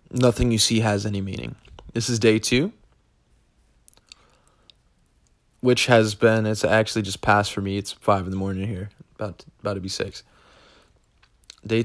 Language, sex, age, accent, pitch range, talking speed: English, male, 20-39, American, 100-115 Hz, 160 wpm